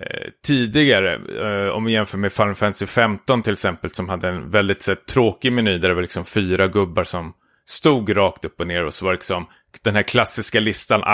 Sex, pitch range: male, 100-130 Hz